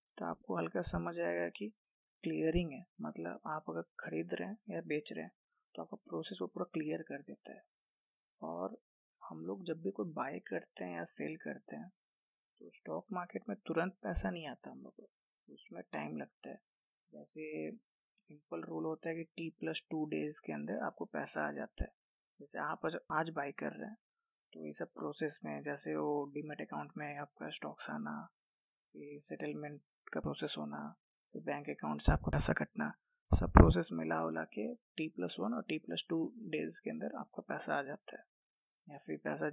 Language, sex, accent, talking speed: Hindi, female, native, 195 wpm